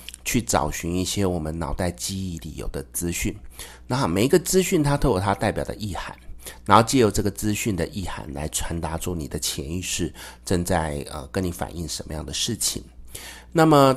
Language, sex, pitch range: Chinese, male, 80-100 Hz